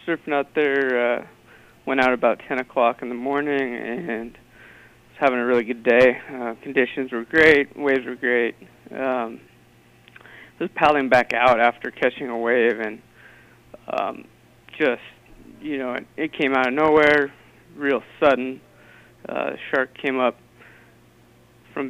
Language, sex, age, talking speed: English, male, 20-39, 150 wpm